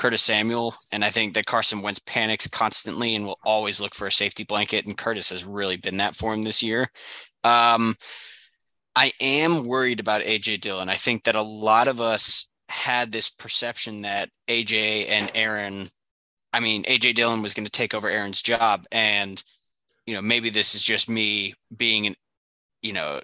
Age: 20-39